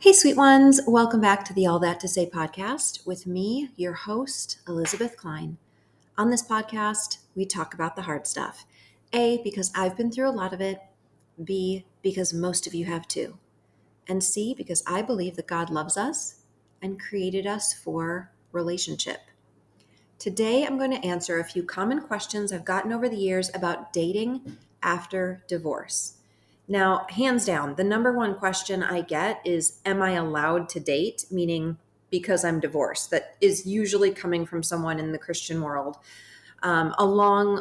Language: English